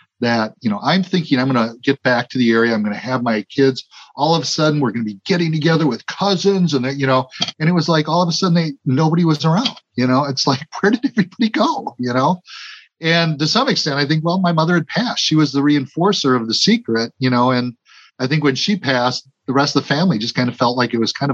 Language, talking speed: English, 270 wpm